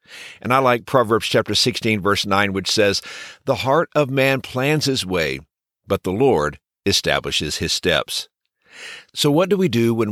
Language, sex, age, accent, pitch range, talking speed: English, male, 60-79, American, 100-140 Hz, 170 wpm